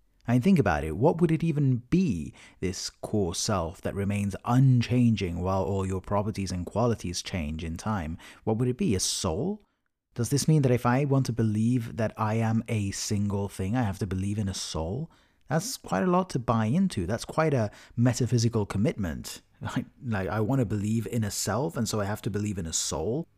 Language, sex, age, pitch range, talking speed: English, male, 30-49, 100-135 Hz, 210 wpm